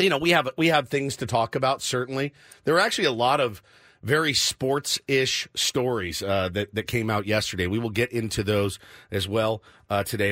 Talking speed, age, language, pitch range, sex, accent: 210 wpm, 50-69, English, 105-140 Hz, male, American